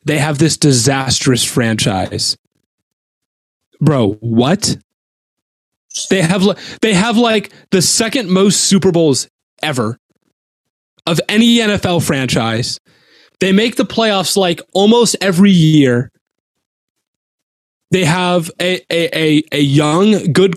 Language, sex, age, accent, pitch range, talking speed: English, male, 20-39, American, 140-190 Hz, 110 wpm